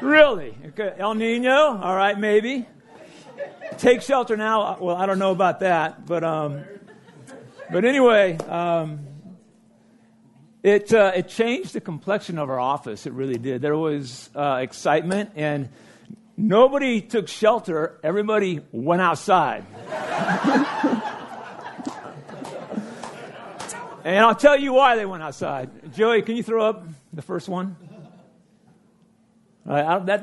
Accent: American